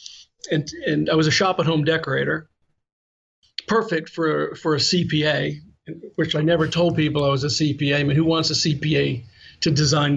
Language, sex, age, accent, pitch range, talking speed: English, male, 50-69, American, 155-180 Hz, 185 wpm